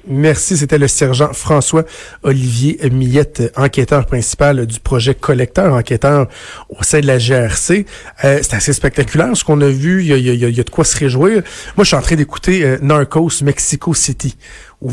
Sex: male